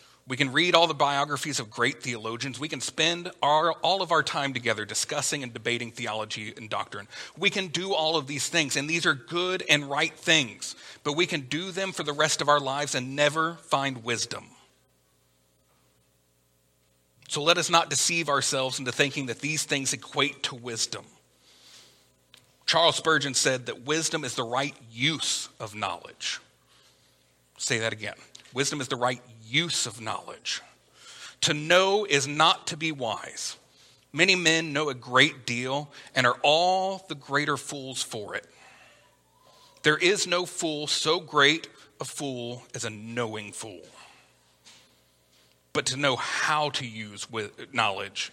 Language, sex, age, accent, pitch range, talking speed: English, male, 40-59, American, 115-155 Hz, 160 wpm